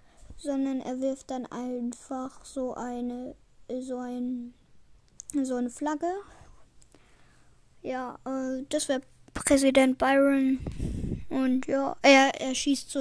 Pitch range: 255-285 Hz